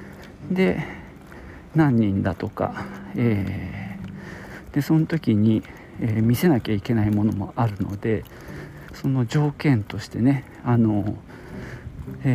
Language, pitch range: Japanese, 100-140 Hz